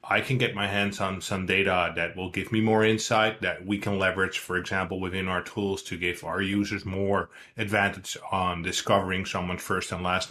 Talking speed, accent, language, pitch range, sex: 205 wpm, American, English, 95-115 Hz, male